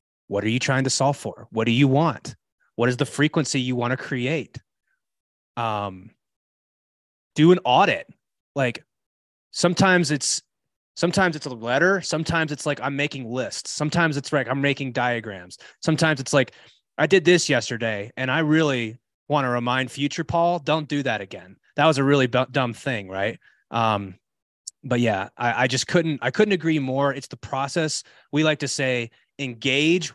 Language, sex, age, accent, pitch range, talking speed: English, male, 20-39, American, 120-150 Hz, 175 wpm